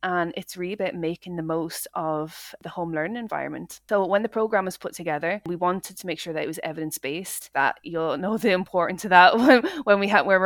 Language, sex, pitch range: English, female, 160-190 Hz